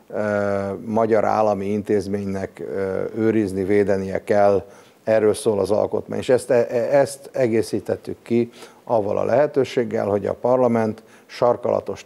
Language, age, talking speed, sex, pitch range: Hungarian, 50-69, 110 wpm, male, 100-120 Hz